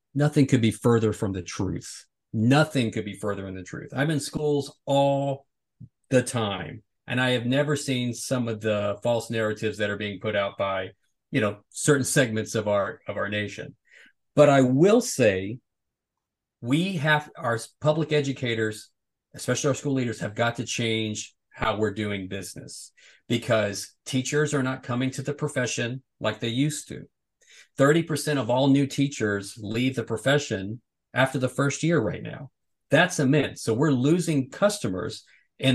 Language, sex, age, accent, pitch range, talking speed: English, male, 40-59, American, 110-140 Hz, 170 wpm